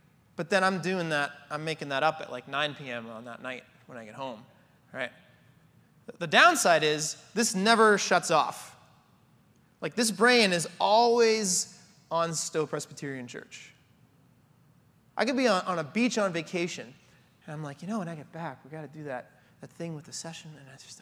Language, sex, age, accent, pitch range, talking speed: English, male, 30-49, American, 150-200 Hz, 195 wpm